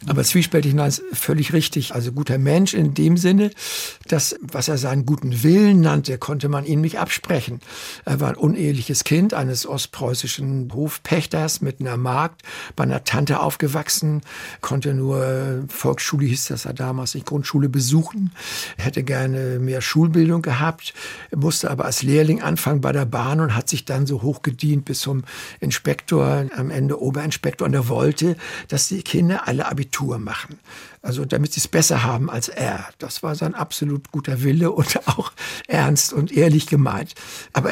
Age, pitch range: 60-79, 130-155 Hz